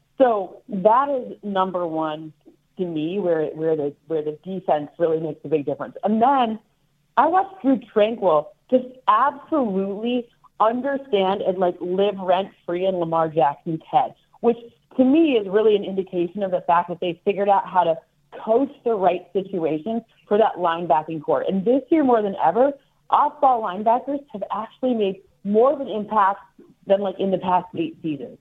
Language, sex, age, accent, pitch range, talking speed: English, female, 40-59, American, 165-225 Hz, 175 wpm